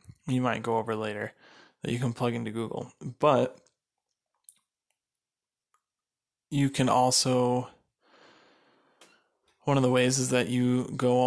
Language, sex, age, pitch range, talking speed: English, male, 20-39, 120-130 Hz, 120 wpm